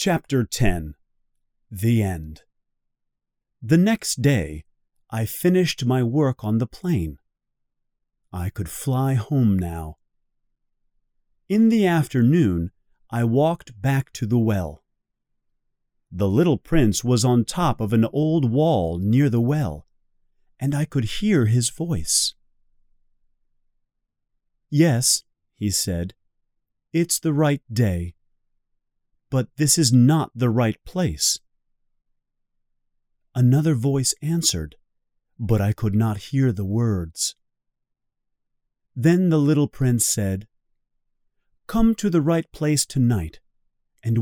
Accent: American